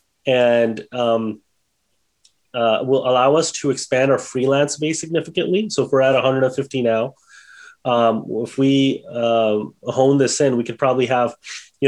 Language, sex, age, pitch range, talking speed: English, male, 30-49, 115-135 Hz, 150 wpm